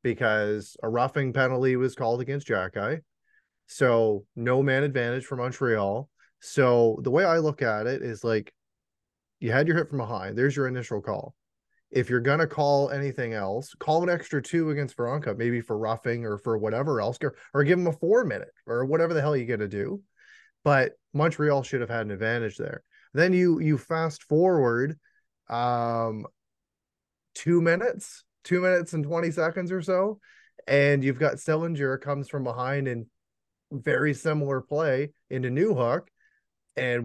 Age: 20-39